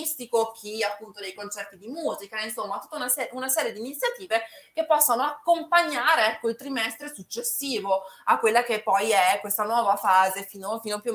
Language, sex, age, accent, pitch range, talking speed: Italian, female, 20-39, native, 210-265 Hz, 170 wpm